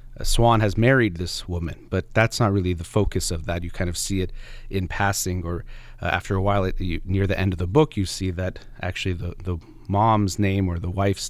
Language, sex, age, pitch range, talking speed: English, male, 30-49, 95-115 Hz, 235 wpm